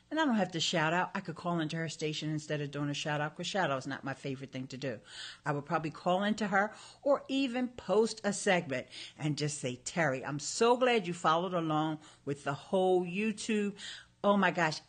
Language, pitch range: English, 145-200 Hz